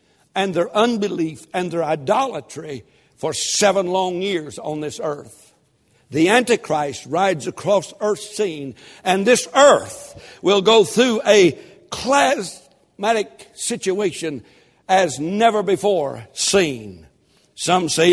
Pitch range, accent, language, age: 175-245 Hz, American, English, 60-79